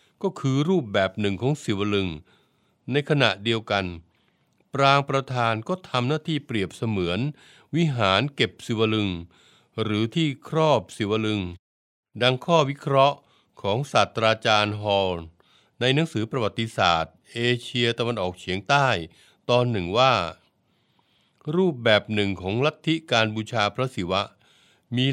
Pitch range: 100-135 Hz